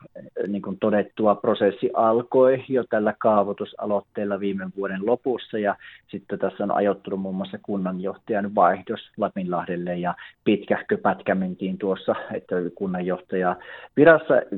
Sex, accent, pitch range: male, native, 95-120 Hz